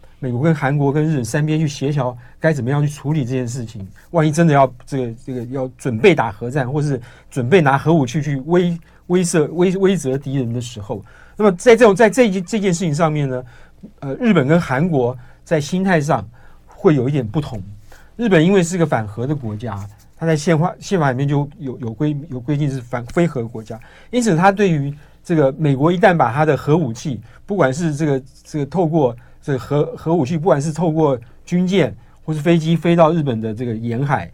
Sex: male